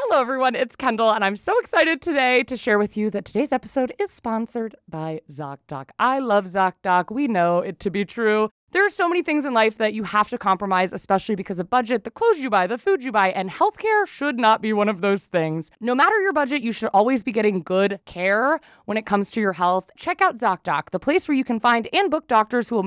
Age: 20-39